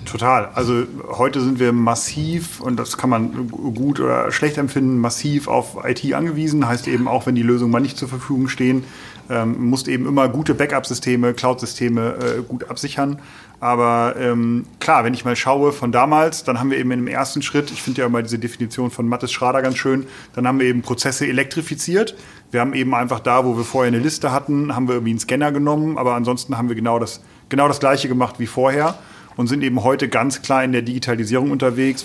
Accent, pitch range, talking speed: German, 120-140 Hz, 210 wpm